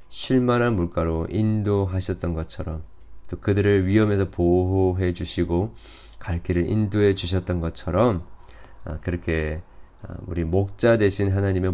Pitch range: 85-105 Hz